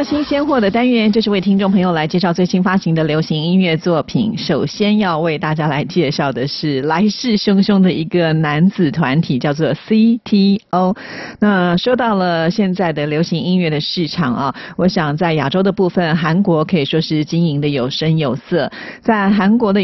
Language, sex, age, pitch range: Chinese, female, 40-59, 160-200 Hz